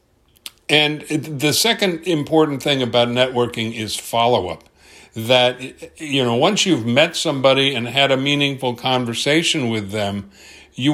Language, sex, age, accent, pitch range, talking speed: English, male, 60-79, American, 115-140 Hz, 130 wpm